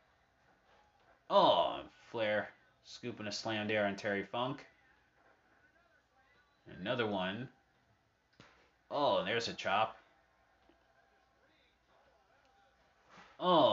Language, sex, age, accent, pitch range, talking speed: English, male, 30-49, American, 100-110 Hz, 80 wpm